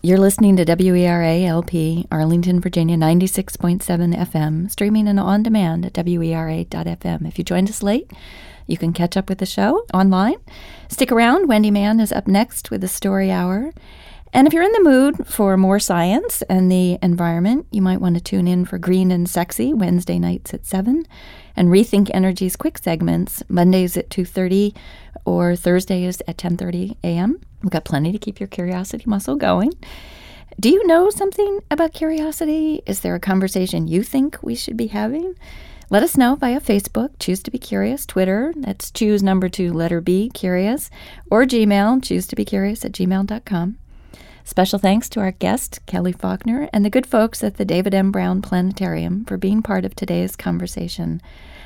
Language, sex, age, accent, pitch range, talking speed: English, female, 30-49, American, 175-220 Hz, 170 wpm